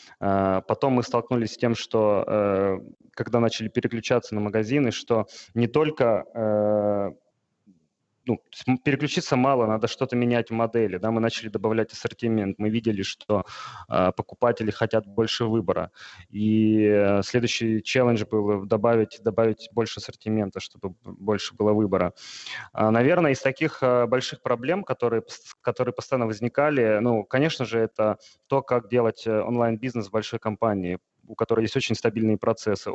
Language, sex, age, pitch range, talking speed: Russian, male, 20-39, 105-125 Hz, 140 wpm